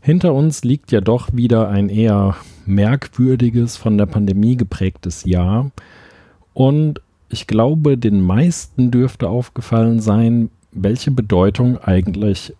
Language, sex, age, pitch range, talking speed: German, male, 40-59, 95-125 Hz, 120 wpm